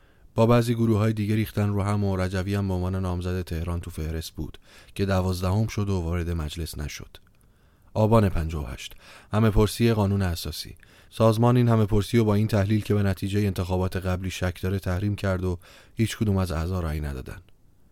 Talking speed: 180 wpm